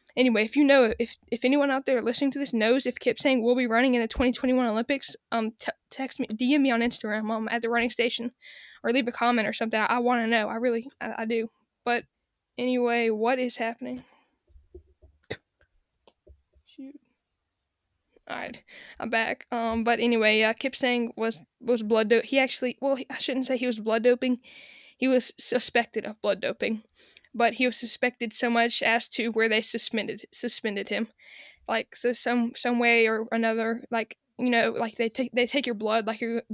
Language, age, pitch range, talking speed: English, 10-29, 230-250 Hz, 200 wpm